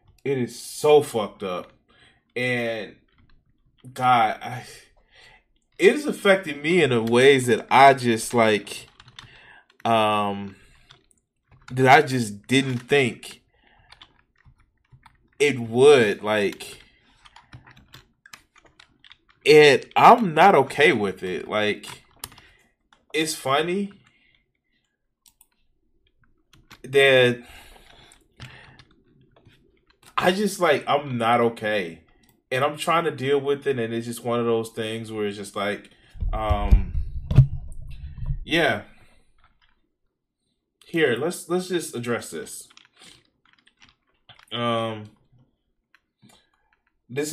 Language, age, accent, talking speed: English, 20-39, American, 90 wpm